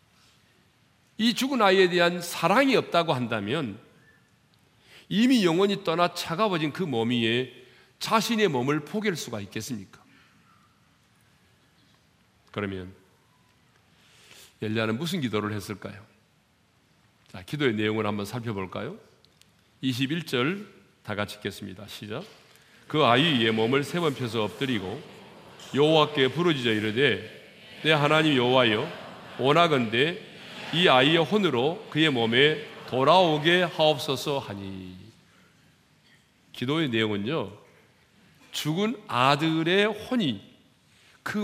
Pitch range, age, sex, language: 110-175 Hz, 40-59, male, Korean